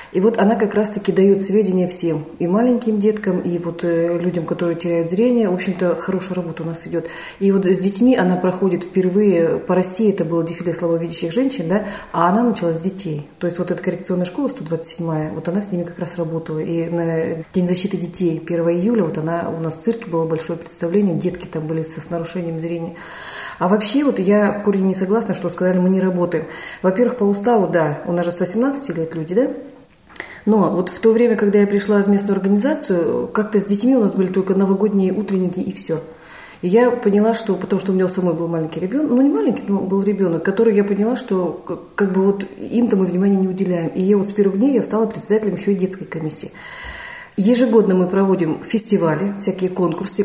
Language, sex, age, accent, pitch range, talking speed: Russian, female, 30-49, native, 170-205 Hz, 215 wpm